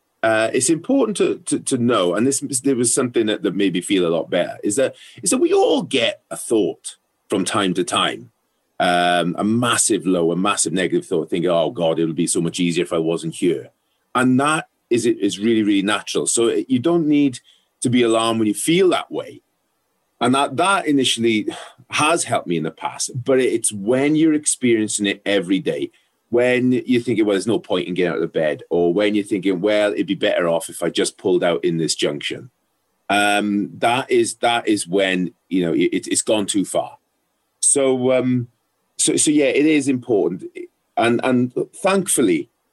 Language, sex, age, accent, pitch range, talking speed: English, male, 30-49, British, 100-140 Hz, 205 wpm